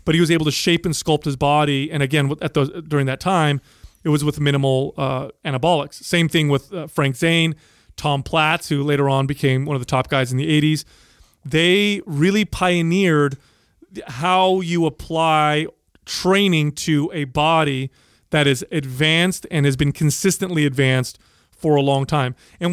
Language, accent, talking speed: English, American, 170 wpm